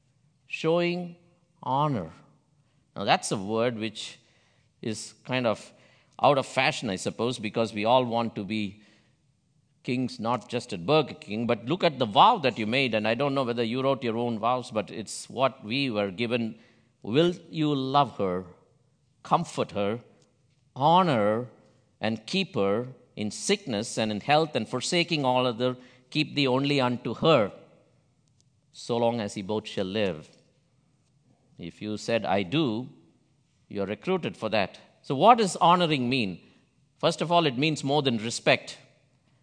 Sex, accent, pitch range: male, Indian, 115-145 Hz